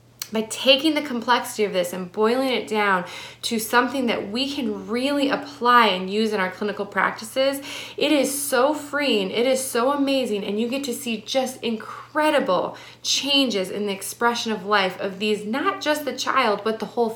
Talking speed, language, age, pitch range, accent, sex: 185 wpm, English, 20-39, 200-260 Hz, American, female